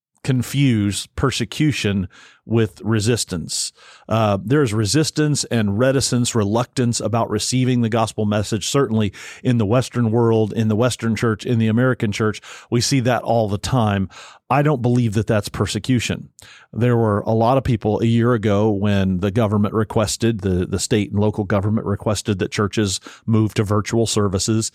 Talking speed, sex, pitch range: 160 wpm, male, 105-125 Hz